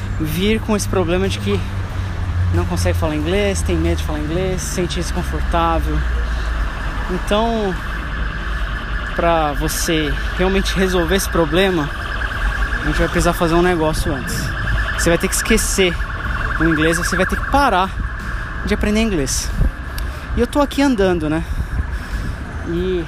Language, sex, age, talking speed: Portuguese, male, 20-39, 145 wpm